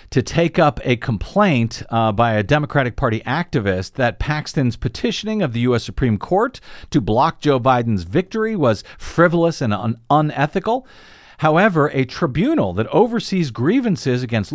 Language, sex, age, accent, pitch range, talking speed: English, male, 50-69, American, 120-165 Hz, 145 wpm